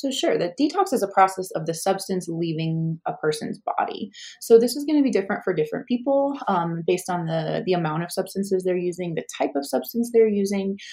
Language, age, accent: English, 20-39, American